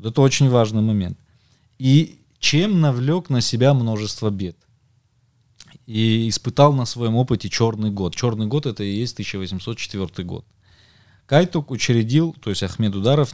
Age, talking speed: 20-39, 135 wpm